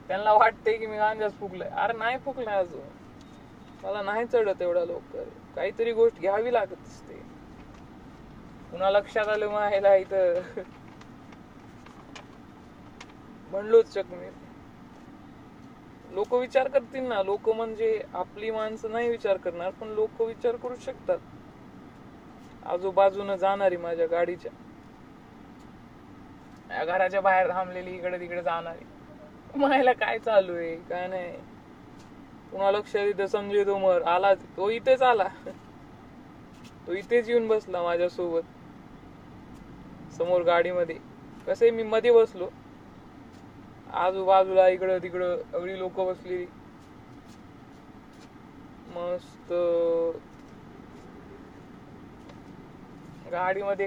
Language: Marathi